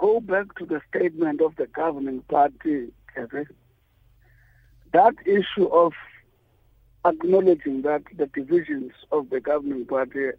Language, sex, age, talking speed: English, male, 60-79, 120 wpm